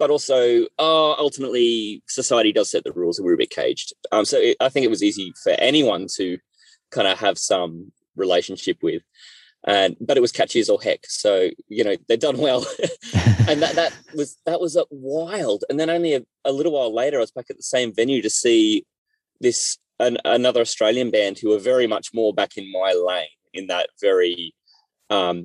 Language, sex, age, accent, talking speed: English, male, 20-39, Australian, 205 wpm